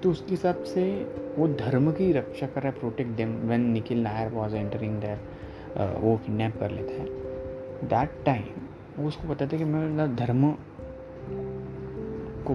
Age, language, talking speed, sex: 20-39, Hindi, 165 wpm, male